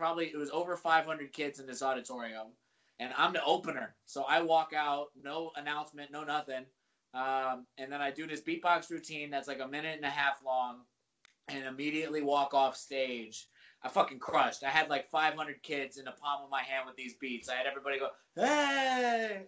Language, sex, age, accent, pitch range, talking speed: English, male, 20-39, American, 130-155 Hz, 195 wpm